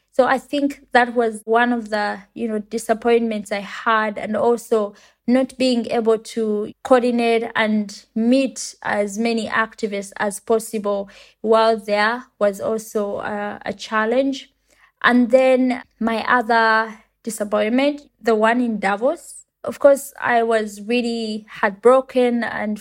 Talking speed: 130 wpm